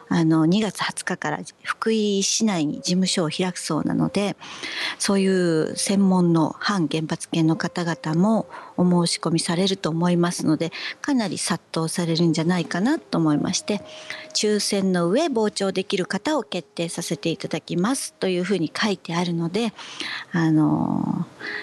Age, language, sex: 50-69, English, female